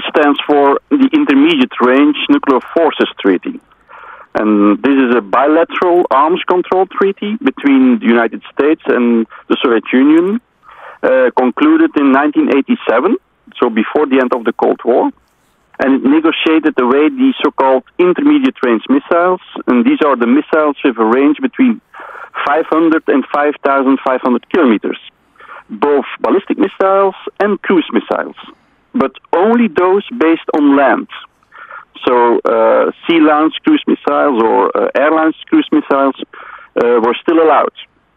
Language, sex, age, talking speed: English, male, 40-59, 130 wpm